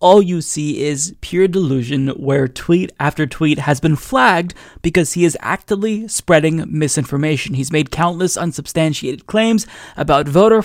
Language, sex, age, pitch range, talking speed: English, male, 20-39, 160-215 Hz, 145 wpm